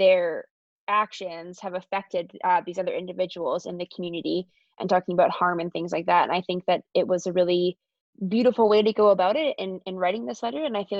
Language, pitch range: English, 180-200 Hz